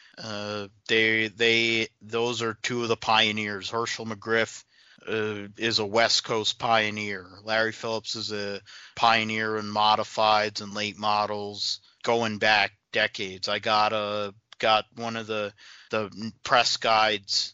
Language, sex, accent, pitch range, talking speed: English, male, American, 100-110 Hz, 135 wpm